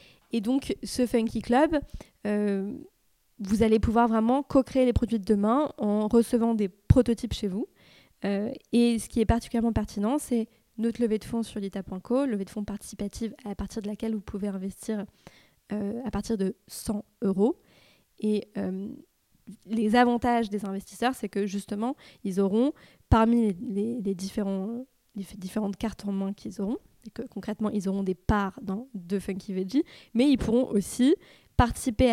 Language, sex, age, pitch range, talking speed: French, female, 20-39, 200-235 Hz, 170 wpm